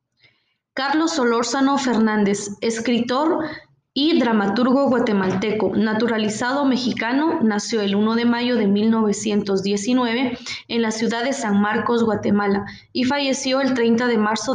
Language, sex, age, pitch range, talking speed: Spanish, female, 20-39, 210-255 Hz, 120 wpm